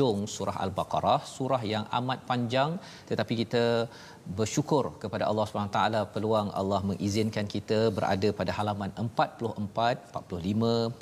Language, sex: Malayalam, male